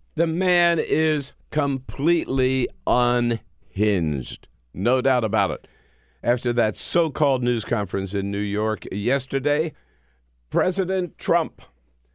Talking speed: 100 wpm